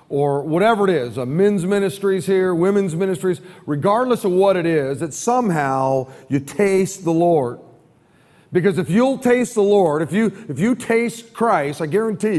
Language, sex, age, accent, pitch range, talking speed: English, male, 40-59, American, 150-195 Hz, 165 wpm